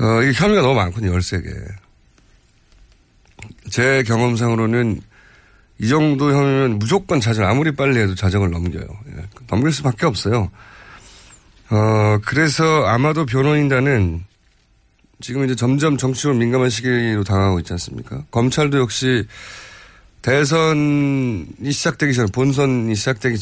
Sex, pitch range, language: male, 100-140 Hz, Korean